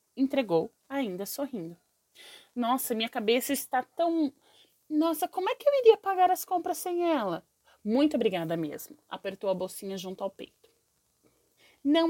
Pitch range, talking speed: 230-355 Hz, 145 wpm